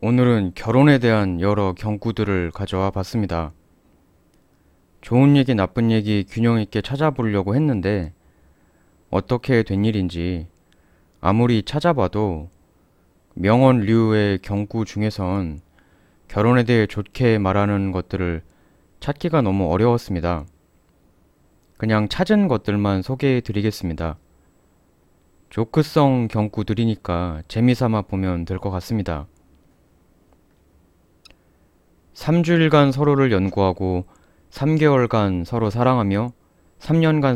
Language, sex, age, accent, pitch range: Korean, male, 30-49, native, 85-115 Hz